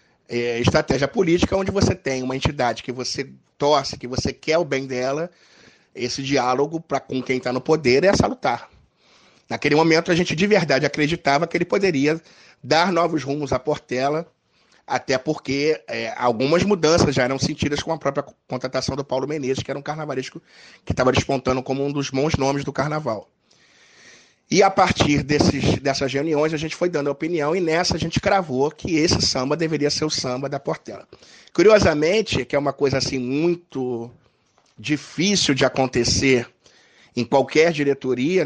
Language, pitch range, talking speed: Portuguese, 130-155 Hz, 165 wpm